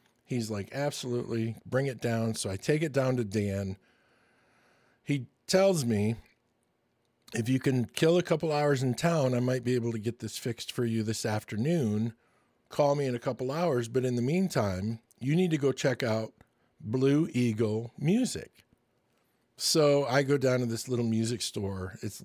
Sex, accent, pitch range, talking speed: male, American, 110-130 Hz, 180 wpm